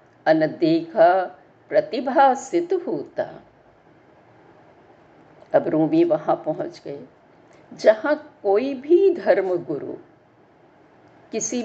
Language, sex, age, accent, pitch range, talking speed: Hindi, female, 50-69, native, 260-340 Hz, 70 wpm